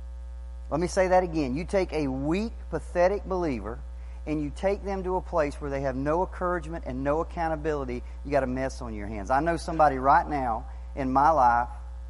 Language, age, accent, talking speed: English, 40-59, American, 205 wpm